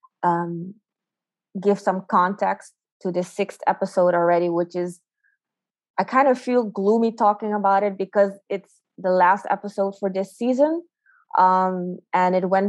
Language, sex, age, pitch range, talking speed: English, female, 20-39, 180-200 Hz, 145 wpm